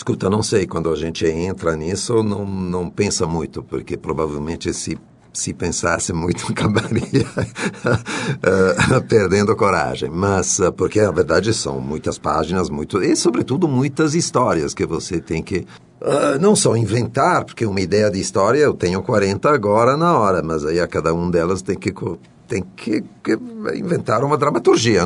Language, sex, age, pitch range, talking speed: Portuguese, male, 50-69, 85-120 Hz, 155 wpm